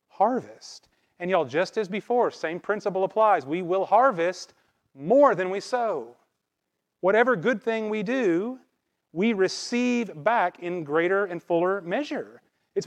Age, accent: 30-49, American